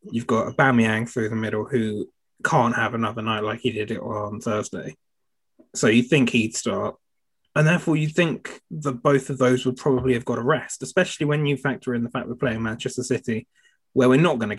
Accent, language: British, English